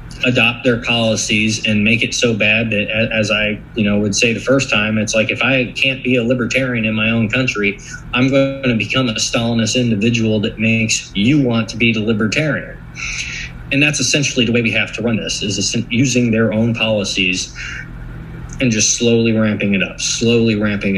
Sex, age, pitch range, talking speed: male, 20-39, 105-125 Hz, 195 wpm